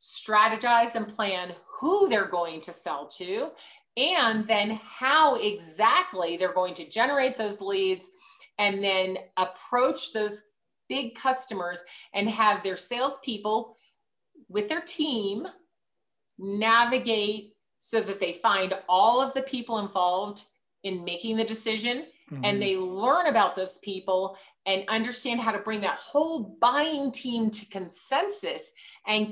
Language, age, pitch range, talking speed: English, 40-59, 195-260 Hz, 130 wpm